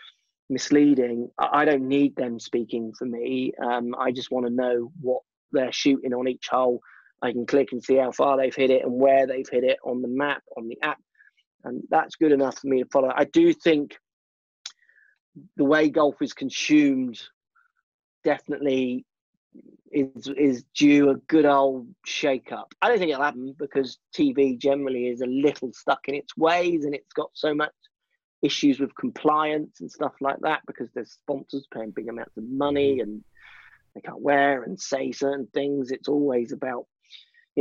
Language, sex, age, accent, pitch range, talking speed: English, male, 30-49, British, 130-155 Hz, 180 wpm